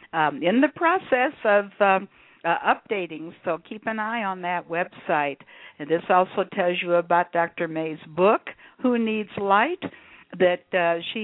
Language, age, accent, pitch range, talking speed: English, 60-79, American, 170-210 Hz, 160 wpm